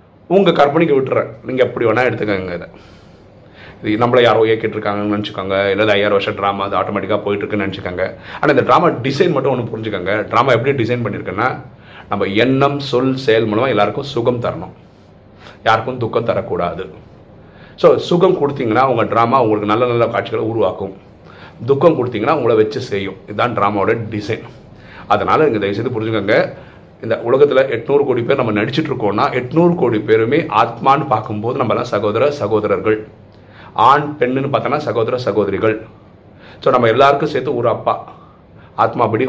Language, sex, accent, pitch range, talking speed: Tamil, male, native, 105-135 Hz, 140 wpm